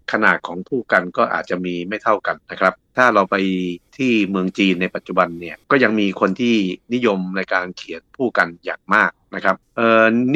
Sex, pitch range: male, 90-115 Hz